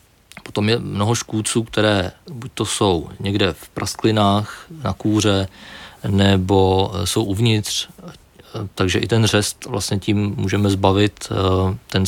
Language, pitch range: Czech, 95-110 Hz